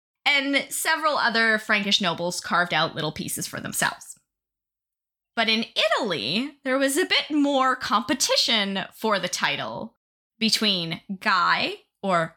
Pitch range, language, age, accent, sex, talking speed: 180-235 Hz, English, 20-39, American, female, 125 wpm